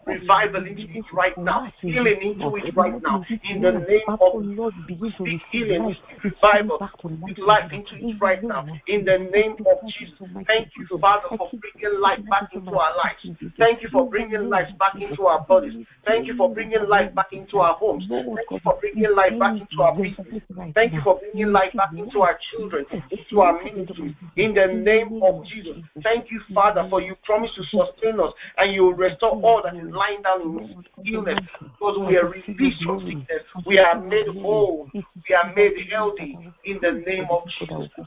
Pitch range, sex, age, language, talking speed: 170-205 Hz, male, 50-69, English, 195 wpm